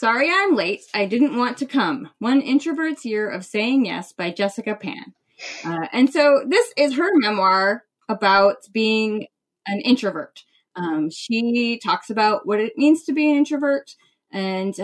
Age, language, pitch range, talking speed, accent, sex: 20-39, English, 190-250 Hz, 160 wpm, American, female